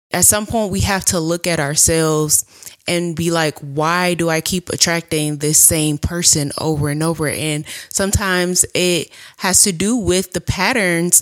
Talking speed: 170 wpm